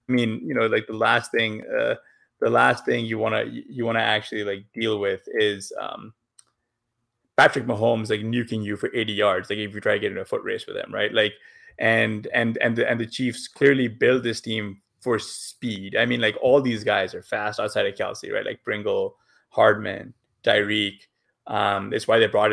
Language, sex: English, male